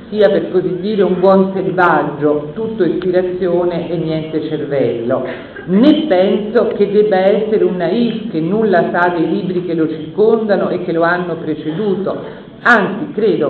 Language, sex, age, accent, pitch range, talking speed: Italian, female, 50-69, native, 165-220 Hz, 150 wpm